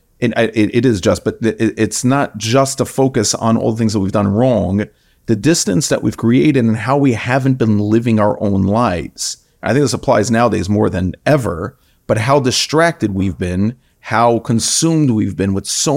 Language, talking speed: English, 190 wpm